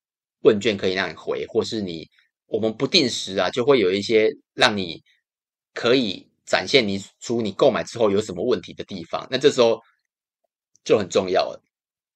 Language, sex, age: Chinese, male, 30-49